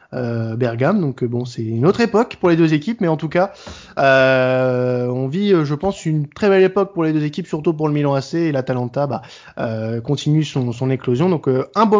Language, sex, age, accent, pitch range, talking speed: French, male, 20-39, French, 130-175 Hz, 245 wpm